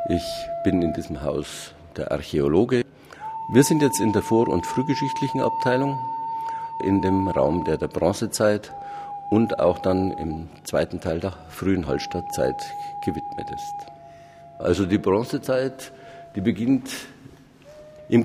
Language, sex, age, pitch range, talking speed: German, male, 50-69, 95-135 Hz, 130 wpm